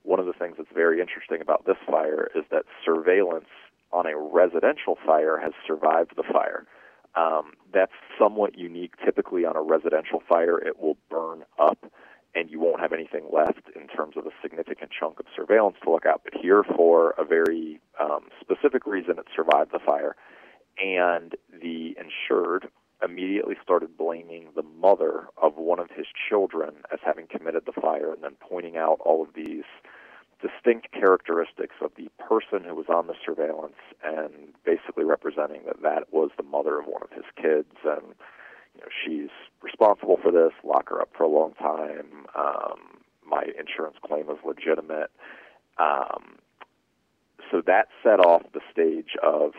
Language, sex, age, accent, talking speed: English, male, 40-59, American, 165 wpm